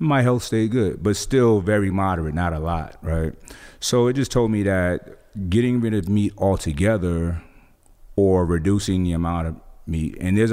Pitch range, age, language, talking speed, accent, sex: 85-100 Hz, 30-49, English, 175 wpm, American, male